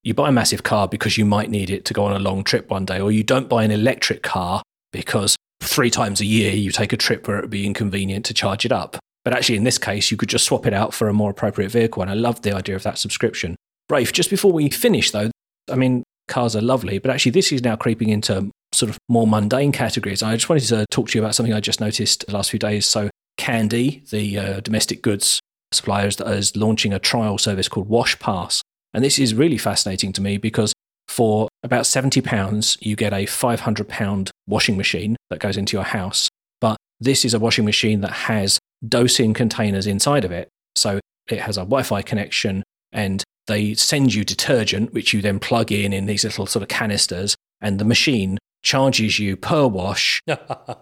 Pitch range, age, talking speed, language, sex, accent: 100-120 Hz, 30-49, 220 wpm, English, male, British